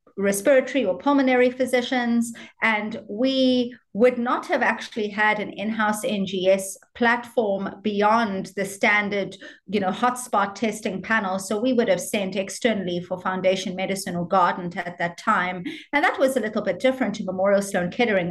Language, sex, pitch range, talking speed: English, female, 200-255 Hz, 150 wpm